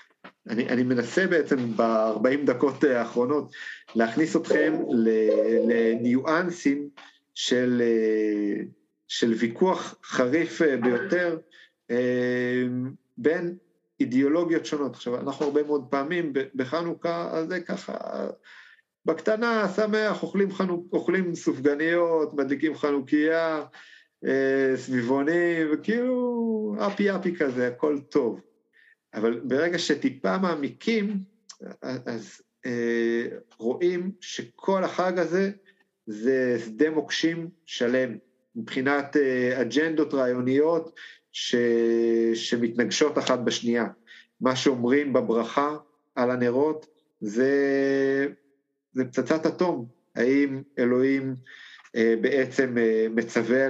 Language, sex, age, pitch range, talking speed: Hebrew, male, 50-69, 120-165 Hz, 90 wpm